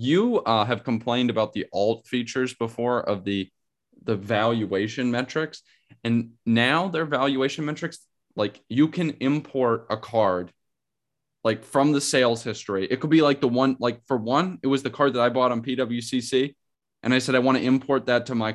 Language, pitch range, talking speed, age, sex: English, 110-130 Hz, 190 wpm, 10-29, male